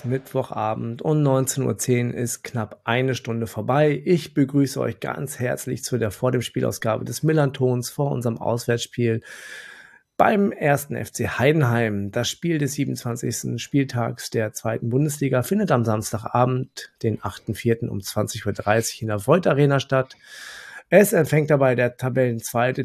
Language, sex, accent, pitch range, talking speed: German, male, German, 120-145 Hz, 135 wpm